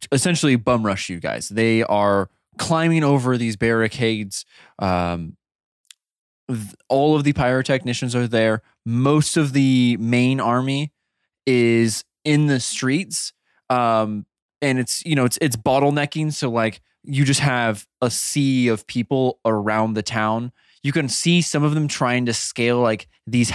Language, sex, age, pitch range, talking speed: English, male, 20-39, 110-135 Hz, 150 wpm